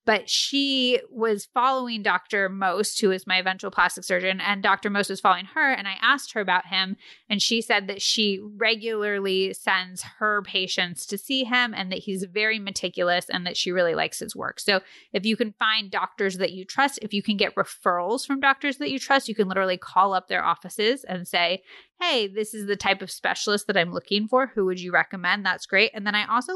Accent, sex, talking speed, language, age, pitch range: American, female, 220 wpm, English, 20-39, 185-225 Hz